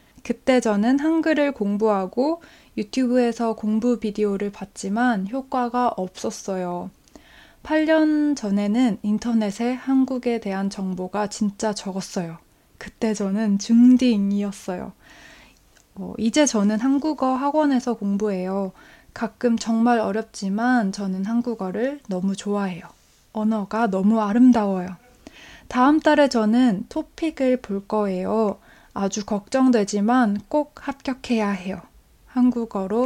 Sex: female